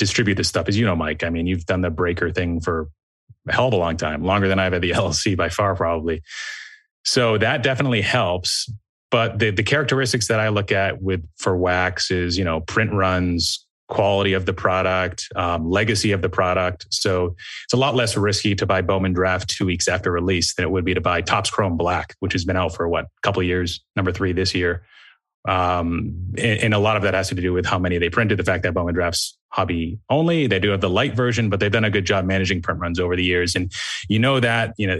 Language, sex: English, male